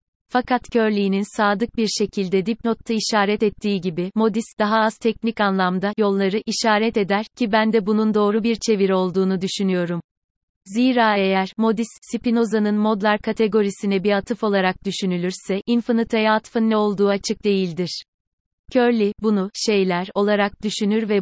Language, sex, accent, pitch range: Turkish, female, native, 190-220 Hz